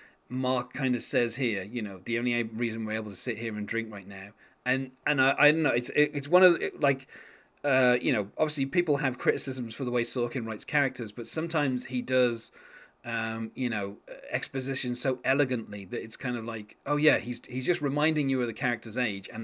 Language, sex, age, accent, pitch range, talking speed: English, male, 30-49, British, 110-140 Hz, 220 wpm